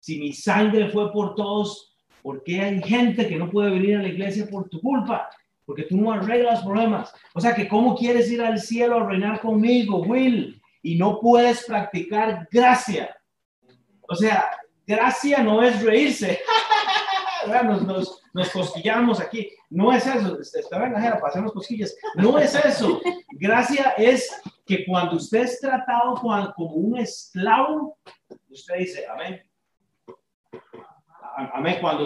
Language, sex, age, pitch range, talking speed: Spanish, male, 30-49, 175-235 Hz, 140 wpm